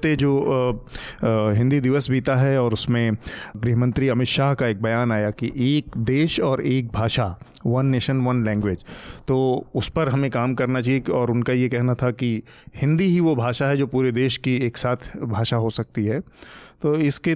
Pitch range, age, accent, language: 120-140 Hz, 30-49, native, Hindi